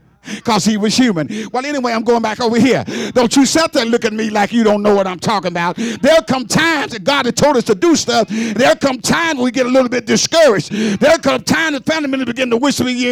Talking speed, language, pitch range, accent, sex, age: 250 wpm, English, 215-290 Hz, American, male, 50-69